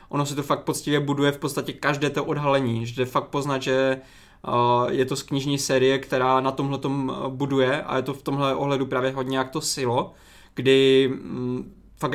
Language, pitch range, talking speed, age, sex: Czech, 130-145 Hz, 190 wpm, 20-39, male